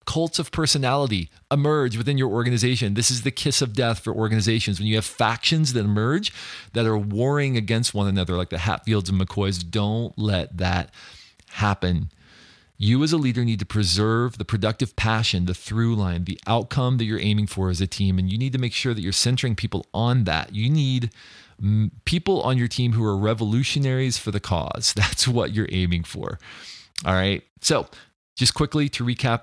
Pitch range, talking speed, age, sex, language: 100-125 Hz, 190 wpm, 40-59, male, English